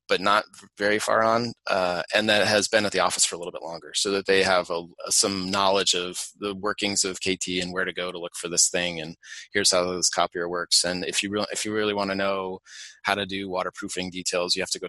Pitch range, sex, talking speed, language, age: 90-105 Hz, male, 255 wpm, English, 20-39